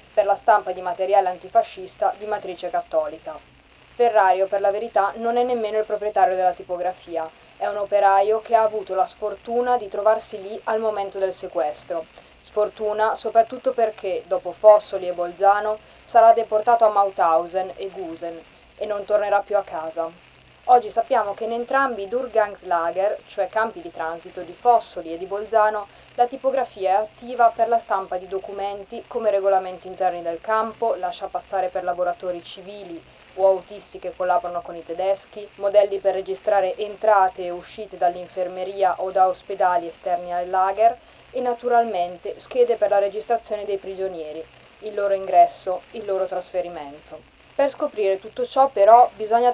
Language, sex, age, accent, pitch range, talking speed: Italian, female, 20-39, native, 185-220 Hz, 155 wpm